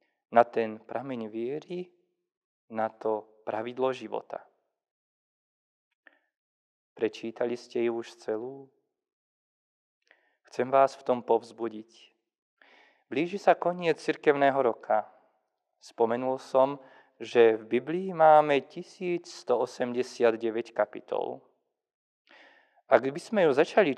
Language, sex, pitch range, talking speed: Slovak, male, 115-155 Hz, 90 wpm